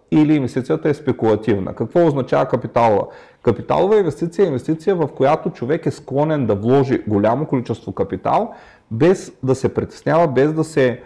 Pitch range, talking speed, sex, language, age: 130-180 Hz, 150 wpm, male, Bulgarian, 30-49